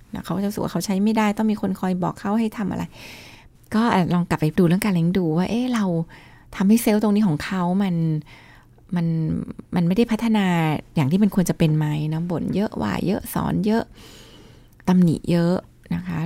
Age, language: 20-39, Thai